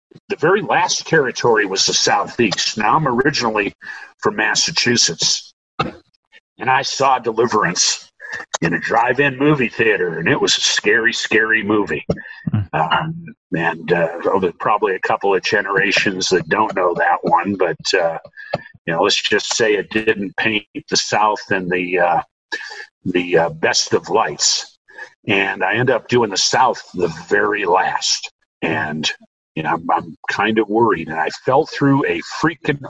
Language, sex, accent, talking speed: English, male, American, 155 wpm